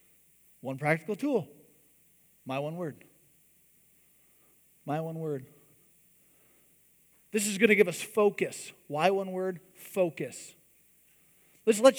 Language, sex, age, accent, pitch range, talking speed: English, male, 40-59, American, 175-235 Hz, 110 wpm